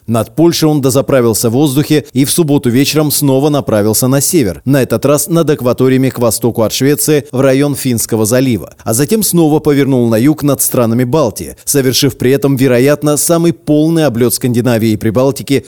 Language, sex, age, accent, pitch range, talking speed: Russian, male, 30-49, native, 115-150 Hz, 175 wpm